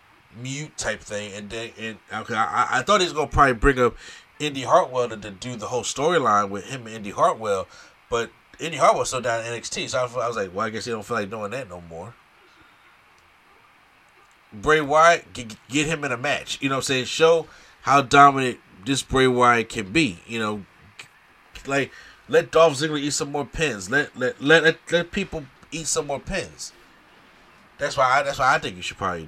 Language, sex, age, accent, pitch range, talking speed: English, male, 30-49, American, 115-145 Hz, 215 wpm